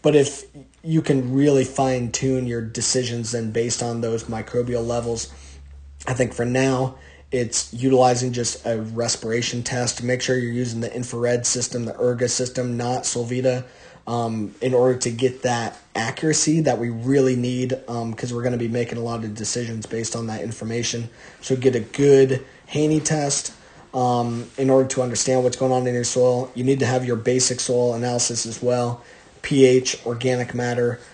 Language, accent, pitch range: English, American, 120-130 Hz